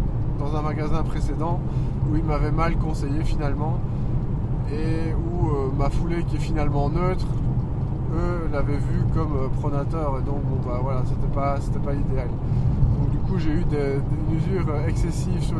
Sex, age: male, 20-39